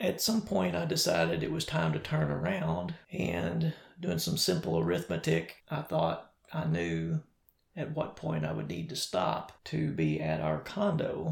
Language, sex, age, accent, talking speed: English, male, 40-59, American, 175 wpm